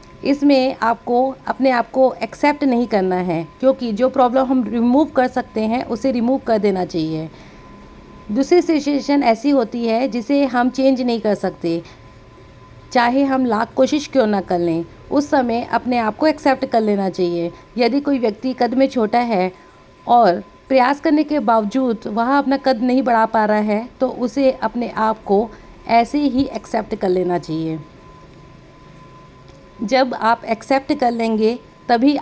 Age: 50-69